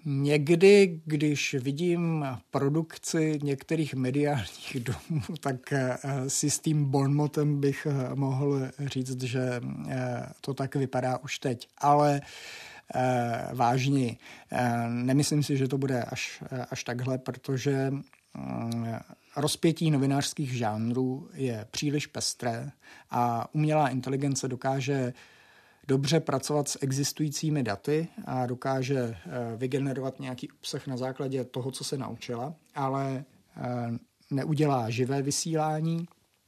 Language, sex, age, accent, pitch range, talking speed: Czech, male, 50-69, native, 130-145 Hz, 100 wpm